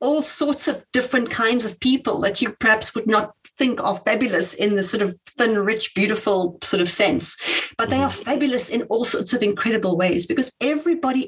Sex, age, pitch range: female, 40-59, 225-290 Hz